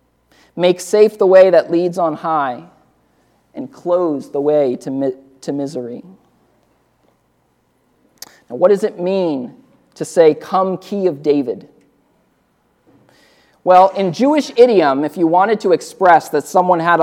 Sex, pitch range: male, 150-195 Hz